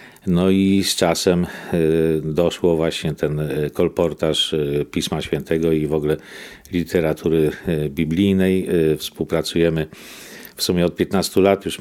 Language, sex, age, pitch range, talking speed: Polish, male, 50-69, 80-90 Hz, 110 wpm